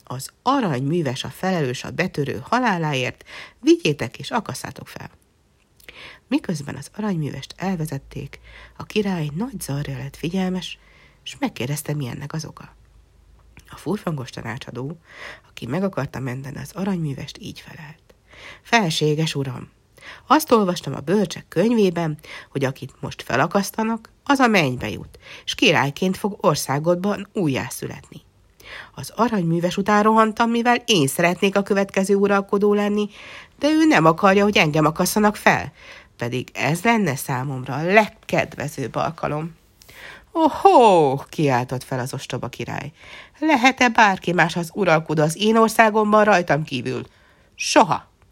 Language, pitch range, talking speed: Hungarian, 135-205 Hz, 125 wpm